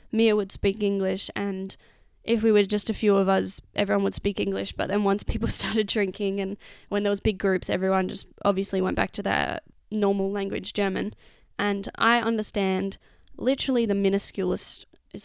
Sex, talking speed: female, 180 wpm